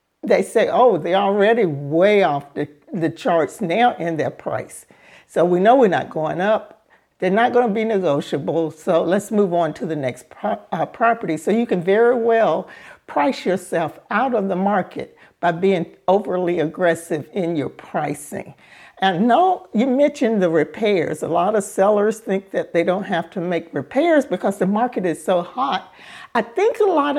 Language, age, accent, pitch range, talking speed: English, 60-79, American, 180-245 Hz, 185 wpm